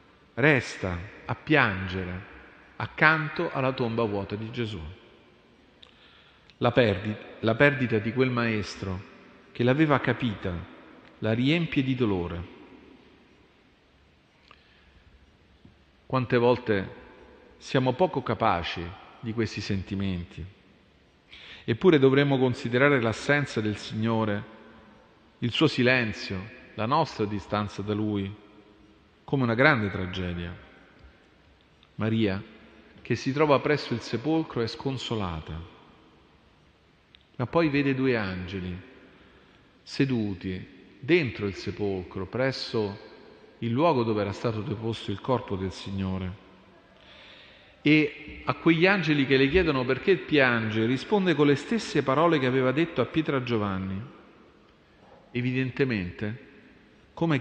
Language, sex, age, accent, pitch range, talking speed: Italian, male, 40-59, native, 100-135 Hz, 105 wpm